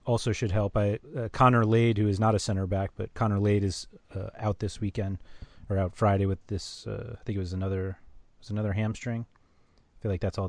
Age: 30-49